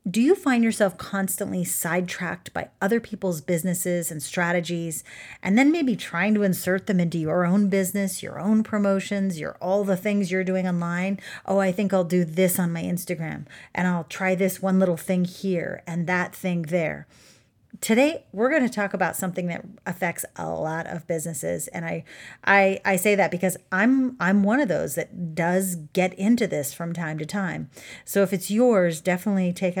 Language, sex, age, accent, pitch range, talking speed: English, female, 40-59, American, 165-195 Hz, 190 wpm